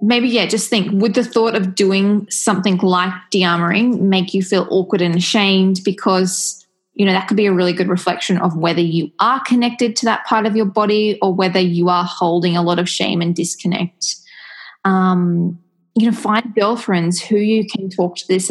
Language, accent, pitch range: English, Australian, 180-215 Hz